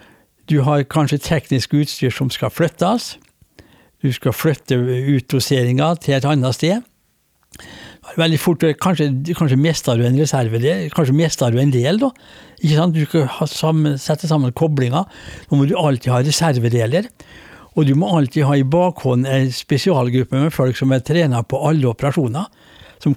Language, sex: English, male